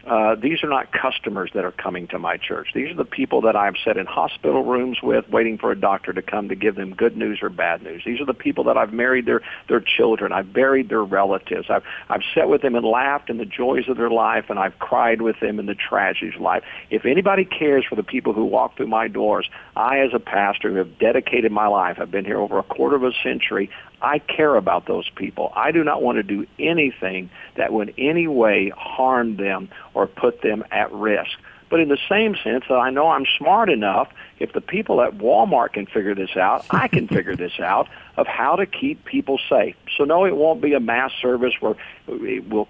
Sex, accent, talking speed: male, American, 235 wpm